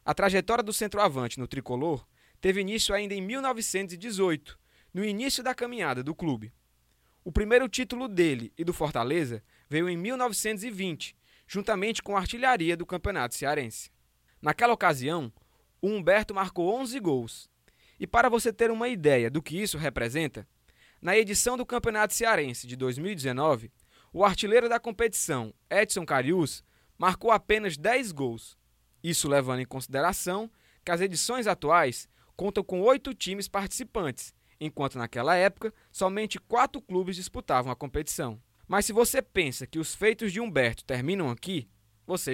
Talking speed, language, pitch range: 145 wpm, Portuguese, 140-215 Hz